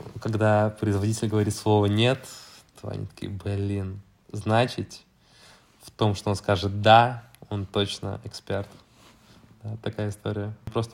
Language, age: Russian, 20-39